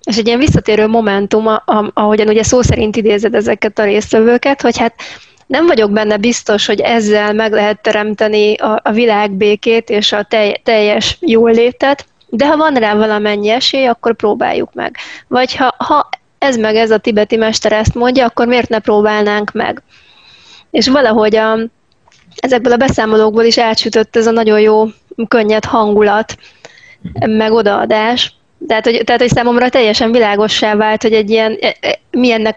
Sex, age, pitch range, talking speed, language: female, 30-49, 215-235 Hz, 150 wpm, Hungarian